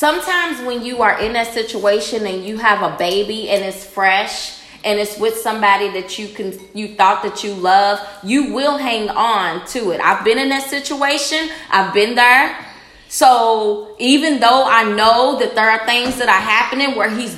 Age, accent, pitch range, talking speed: 20-39, American, 215-260 Hz, 190 wpm